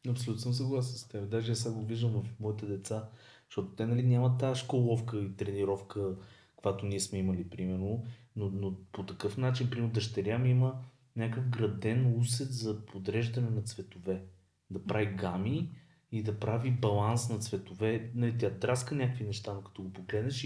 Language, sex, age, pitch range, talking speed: Bulgarian, male, 30-49, 105-125 Hz, 175 wpm